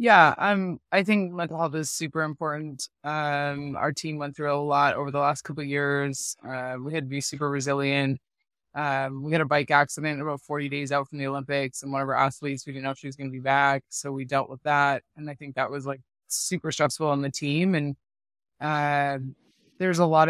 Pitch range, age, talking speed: 140-165 Hz, 20-39, 230 wpm